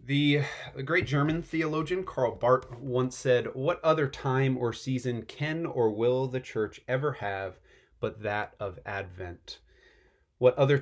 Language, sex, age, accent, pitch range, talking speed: English, male, 30-49, American, 105-130 Hz, 145 wpm